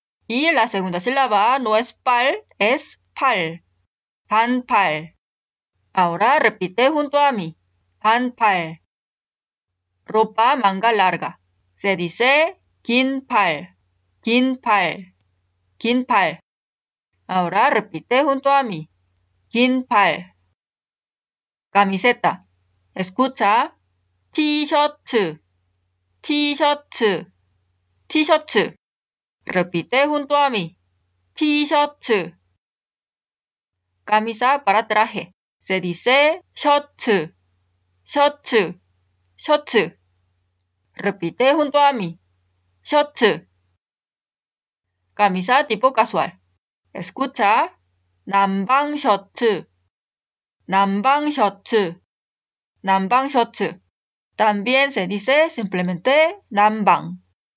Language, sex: Korean, female